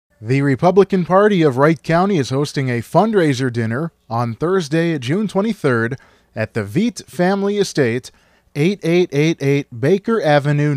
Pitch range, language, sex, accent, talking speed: 135-195 Hz, English, male, American, 130 wpm